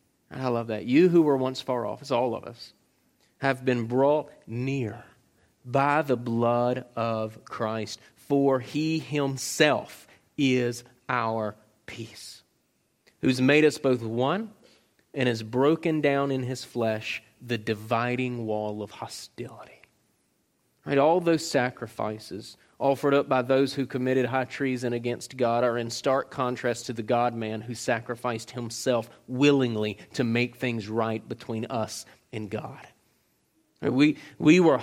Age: 30-49